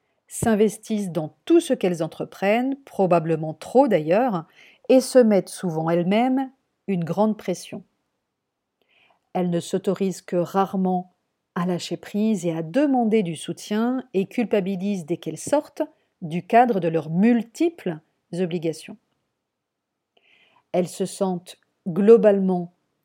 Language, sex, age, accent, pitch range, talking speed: French, female, 50-69, French, 175-225 Hz, 115 wpm